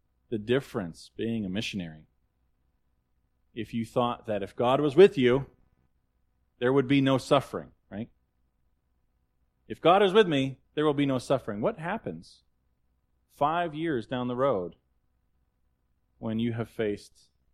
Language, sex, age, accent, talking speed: English, male, 30-49, American, 140 wpm